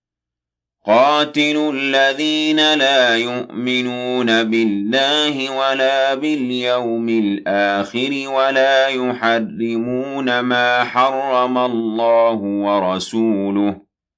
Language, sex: Arabic, male